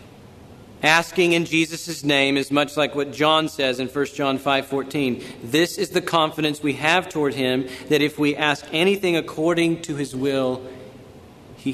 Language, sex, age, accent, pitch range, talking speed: English, male, 40-59, American, 130-160 Hz, 170 wpm